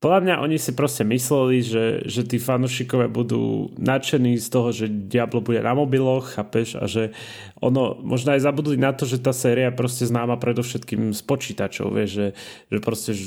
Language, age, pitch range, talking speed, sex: Slovak, 20-39, 105-125 Hz, 180 wpm, male